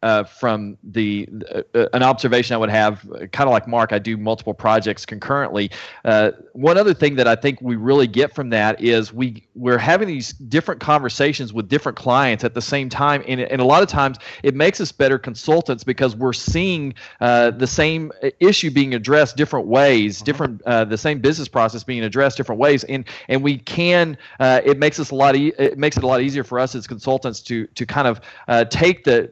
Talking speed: 215 wpm